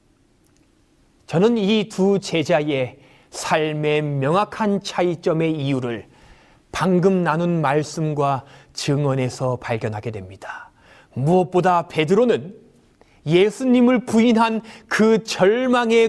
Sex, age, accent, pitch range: male, 30-49, native, 150-230 Hz